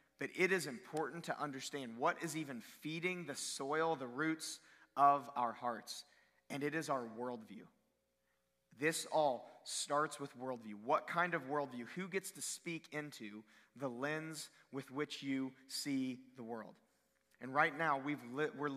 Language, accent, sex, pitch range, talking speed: English, American, male, 135-165 Hz, 155 wpm